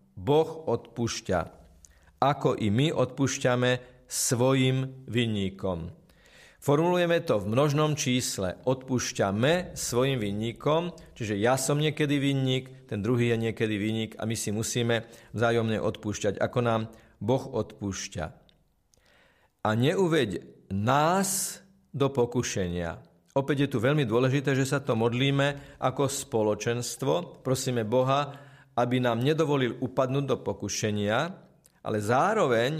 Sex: male